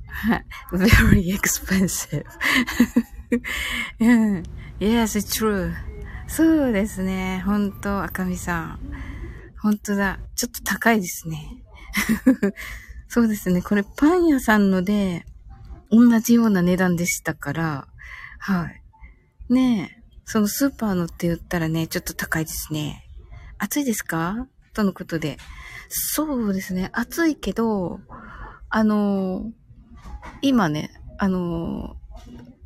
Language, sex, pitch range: Japanese, female, 185-250 Hz